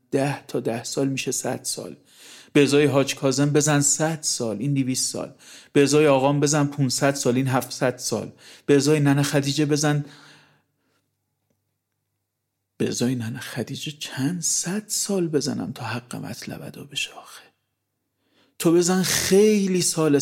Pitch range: 125-165 Hz